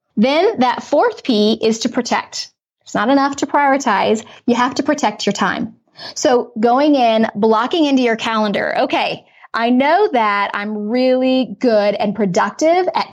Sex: female